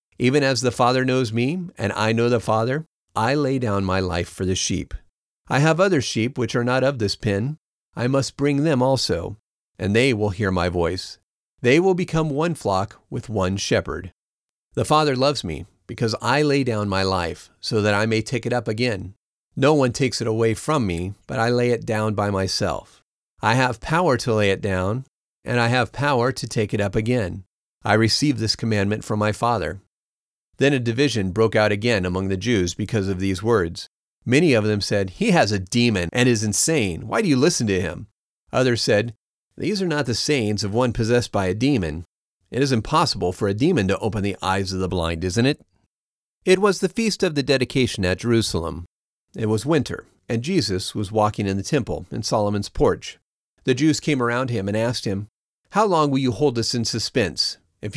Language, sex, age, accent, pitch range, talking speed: English, male, 40-59, American, 100-130 Hz, 205 wpm